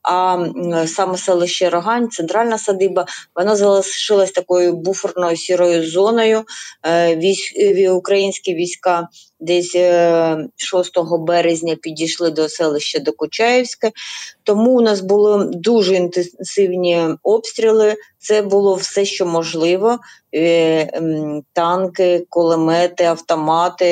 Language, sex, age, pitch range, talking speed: Ukrainian, female, 30-49, 165-195 Hz, 95 wpm